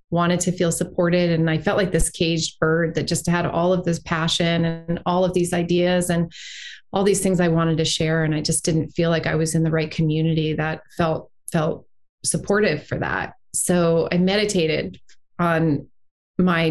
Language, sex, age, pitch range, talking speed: English, female, 30-49, 160-180 Hz, 195 wpm